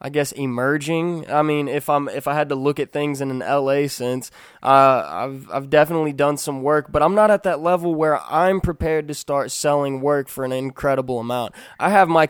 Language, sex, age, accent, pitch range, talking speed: English, male, 20-39, American, 135-160 Hz, 220 wpm